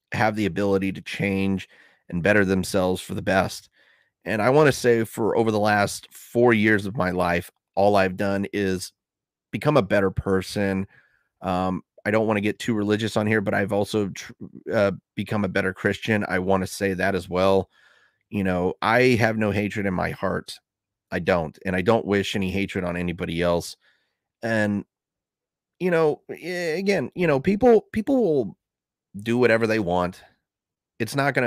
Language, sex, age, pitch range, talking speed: English, male, 30-49, 95-115 Hz, 180 wpm